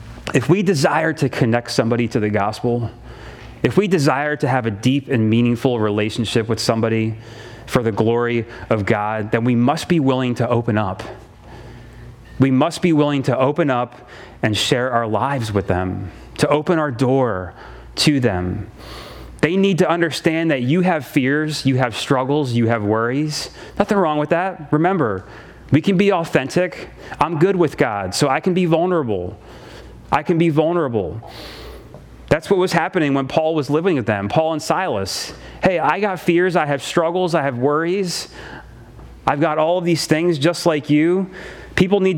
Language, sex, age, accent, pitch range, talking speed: English, male, 30-49, American, 120-165 Hz, 175 wpm